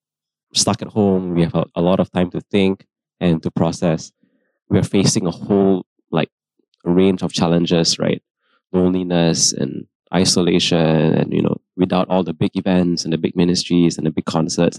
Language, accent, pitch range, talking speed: English, Malaysian, 85-100 Hz, 175 wpm